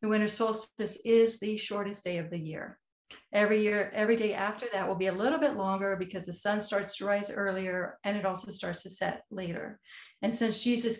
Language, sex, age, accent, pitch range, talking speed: English, female, 40-59, American, 185-215 Hz, 205 wpm